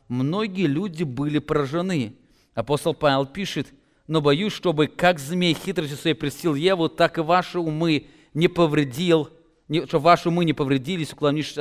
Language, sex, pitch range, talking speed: English, male, 135-175 Hz, 150 wpm